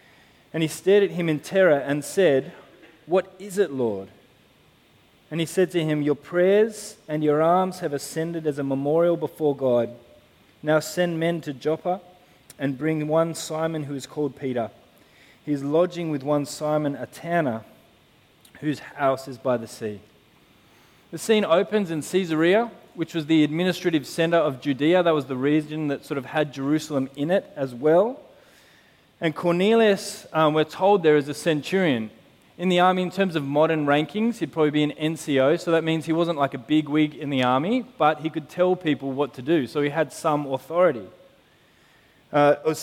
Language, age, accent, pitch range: English, 20-39, Australian, 140-170 Hz